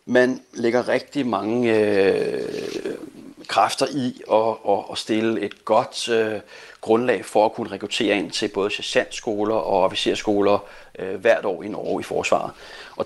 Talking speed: 155 wpm